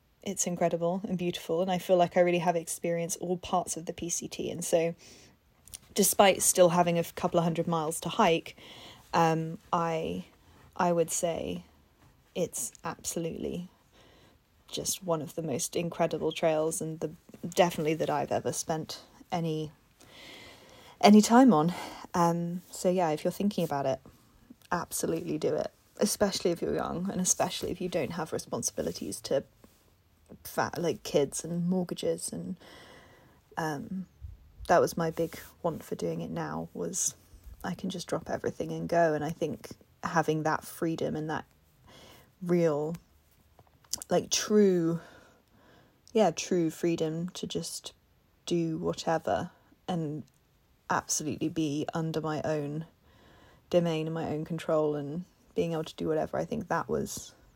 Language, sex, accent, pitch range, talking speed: English, female, British, 155-180 Hz, 145 wpm